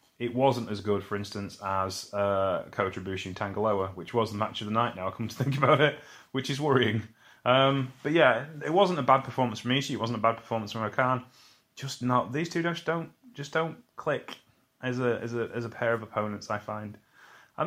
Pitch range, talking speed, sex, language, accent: 115-155 Hz, 225 wpm, male, English, British